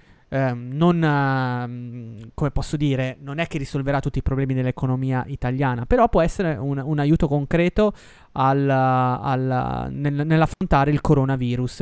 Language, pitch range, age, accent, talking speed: Italian, 130-165 Hz, 20-39, native, 115 wpm